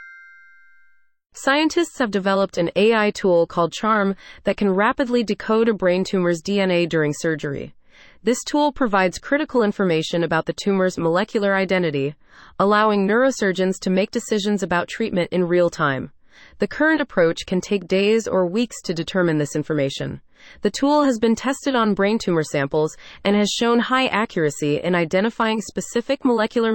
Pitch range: 175-225 Hz